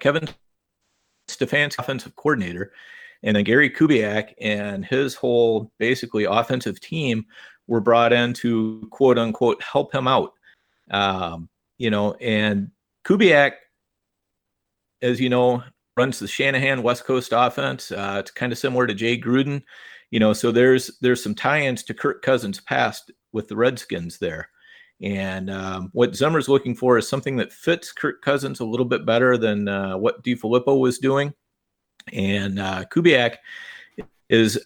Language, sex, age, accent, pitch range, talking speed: English, male, 40-59, American, 100-125 Hz, 150 wpm